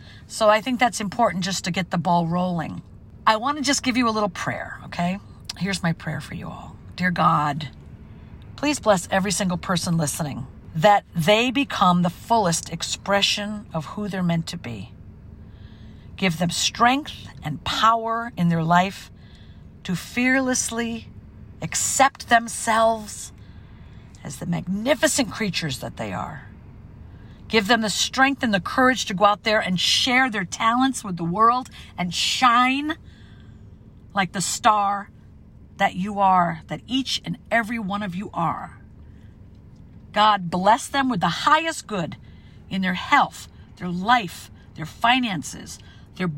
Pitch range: 160-230 Hz